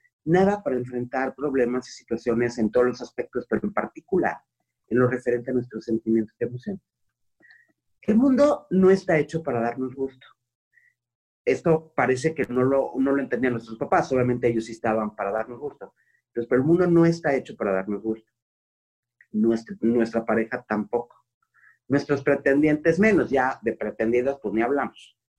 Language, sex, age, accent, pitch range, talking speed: Spanish, male, 40-59, Mexican, 120-165 Hz, 160 wpm